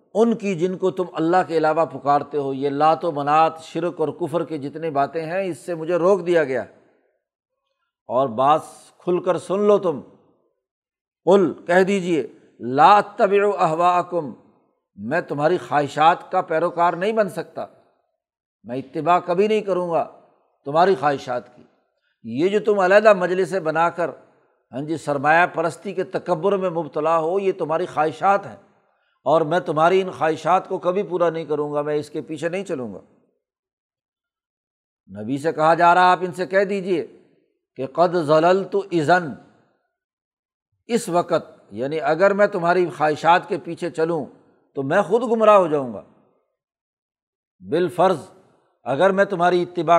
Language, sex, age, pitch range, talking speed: Urdu, male, 60-79, 160-195 Hz, 155 wpm